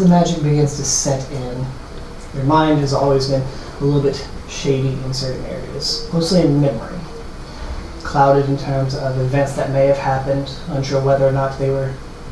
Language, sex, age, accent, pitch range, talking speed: English, male, 30-49, American, 135-155 Hz, 175 wpm